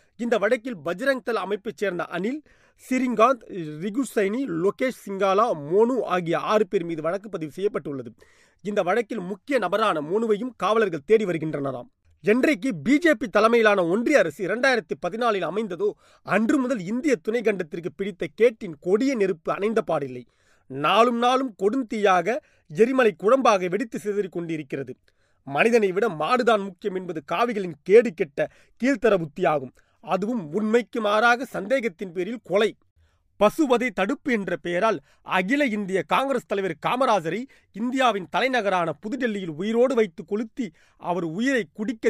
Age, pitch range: 30-49, 185-240 Hz